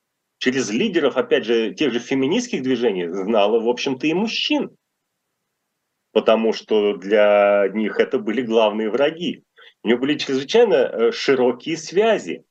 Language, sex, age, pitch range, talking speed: Russian, male, 30-49, 115-175 Hz, 130 wpm